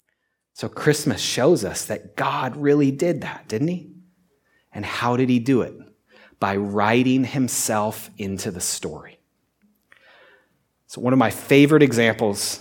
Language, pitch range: English, 105-145 Hz